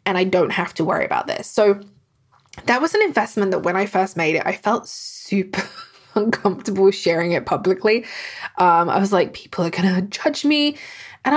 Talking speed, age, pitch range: 195 wpm, 20-39, 180-245 Hz